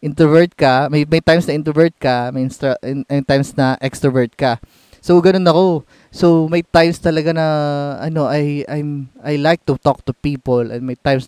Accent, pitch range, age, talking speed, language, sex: native, 130-175 Hz, 20-39, 190 wpm, Filipino, male